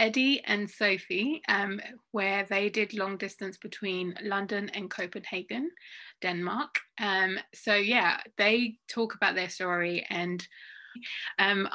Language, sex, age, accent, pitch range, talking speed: English, female, 20-39, British, 180-210 Hz, 125 wpm